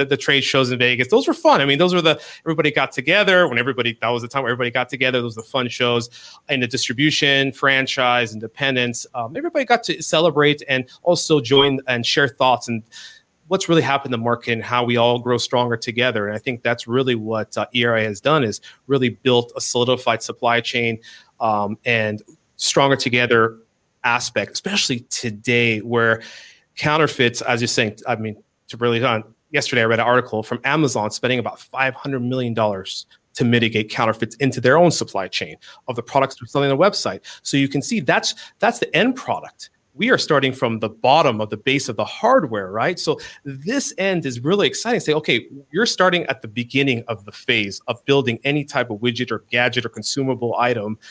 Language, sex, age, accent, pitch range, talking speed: English, male, 30-49, American, 115-140 Hz, 200 wpm